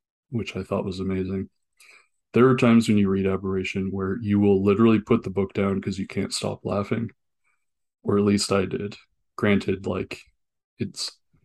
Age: 20-39